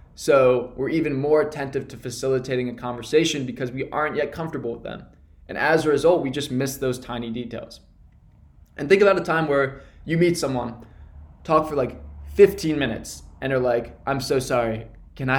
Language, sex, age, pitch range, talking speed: English, male, 20-39, 120-155 Hz, 185 wpm